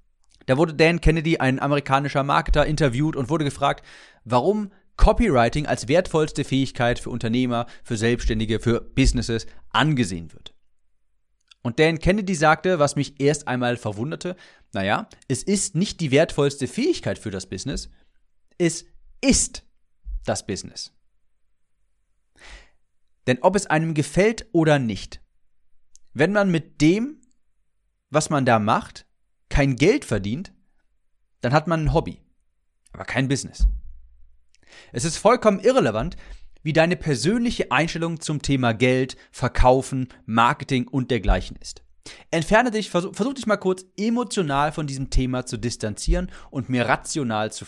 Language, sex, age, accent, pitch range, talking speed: German, male, 30-49, German, 105-165 Hz, 135 wpm